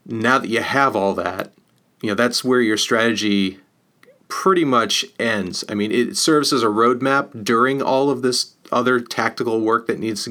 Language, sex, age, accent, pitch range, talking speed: English, male, 30-49, American, 105-125 Hz, 185 wpm